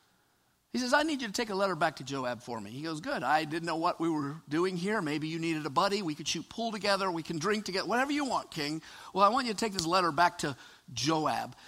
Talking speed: 275 wpm